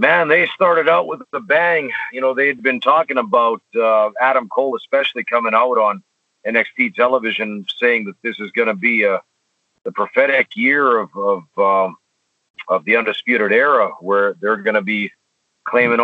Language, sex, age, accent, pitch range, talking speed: English, male, 50-69, American, 105-130 Hz, 170 wpm